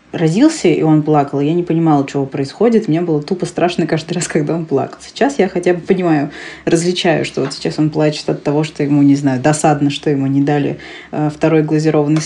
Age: 20-39